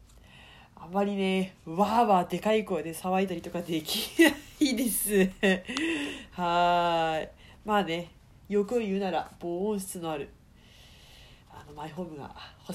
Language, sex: Japanese, female